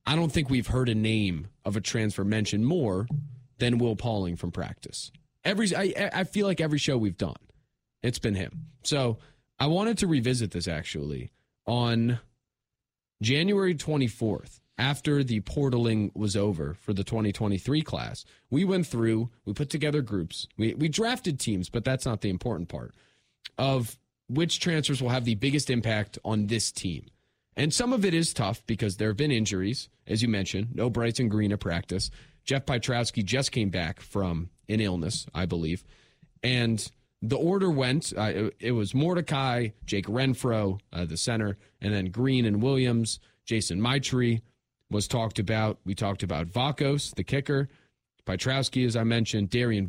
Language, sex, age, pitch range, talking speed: English, male, 30-49, 105-135 Hz, 165 wpm